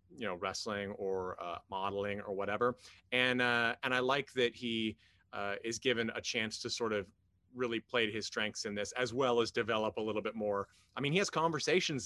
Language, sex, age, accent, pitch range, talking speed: English, male, 30-49, American, 105-145 Hz, 215 wpm